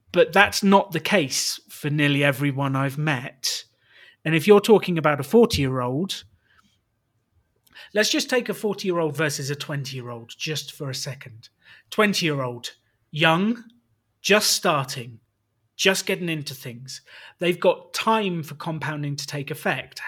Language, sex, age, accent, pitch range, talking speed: English, male, 30-49, British, 130-180 Hz, 135 wpm